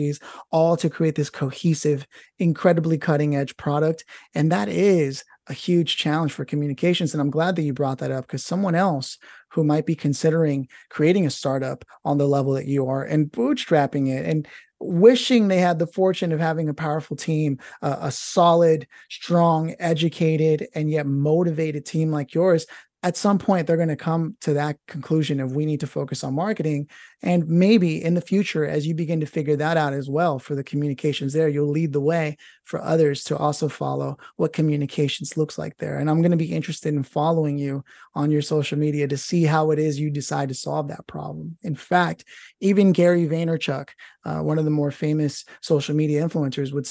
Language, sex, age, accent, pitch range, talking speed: English, male, 30-49, American, 145-170 Hz, 195 wpm